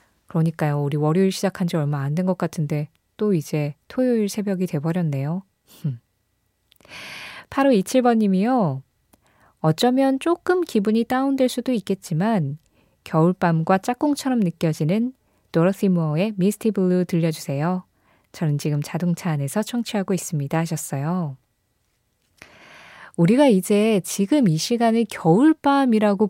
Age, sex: 20-39, female